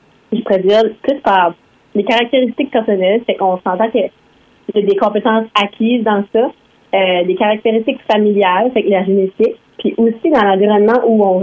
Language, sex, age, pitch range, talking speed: French, female, 30-49, 190-225 Hz, 150 wpm